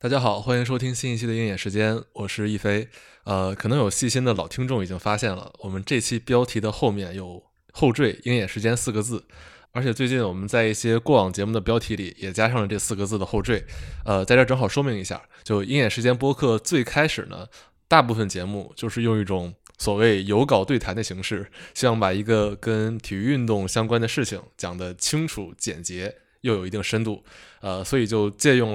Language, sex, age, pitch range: Chinese, male, 20-39, 100-120 Hz